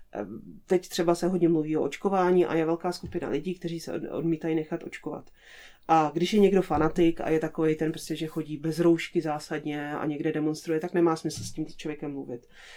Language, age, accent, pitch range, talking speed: Czech, 30-49, native, 160-180 Hz, 195 wpm